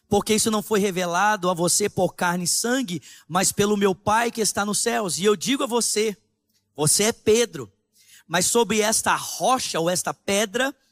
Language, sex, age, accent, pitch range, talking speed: Portuguese, male, 20-39, Brazilian, 165-220 Hz, 185 wpm